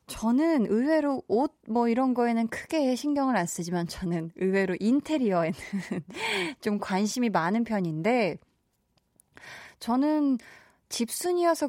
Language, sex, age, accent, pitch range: Korean, female, 20-39, native, 175-260 Hz